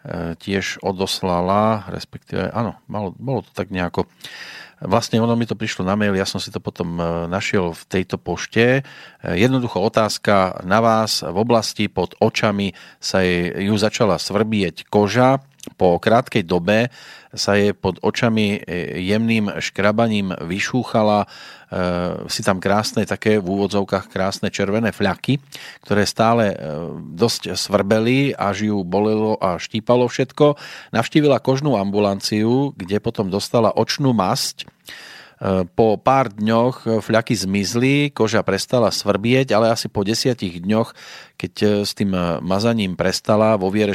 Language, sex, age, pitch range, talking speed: Slovak, male, 40-59, 95-115 Hz, 130 wpm